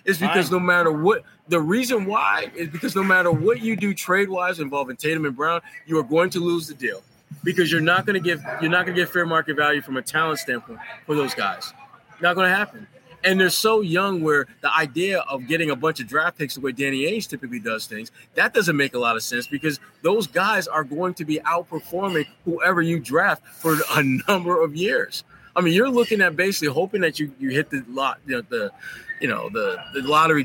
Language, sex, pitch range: English, male, 155-205 Hz